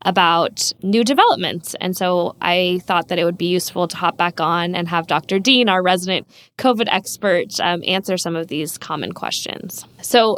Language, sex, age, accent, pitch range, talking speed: English, female, 10-29, American, 170-200 Hz, 185 wpm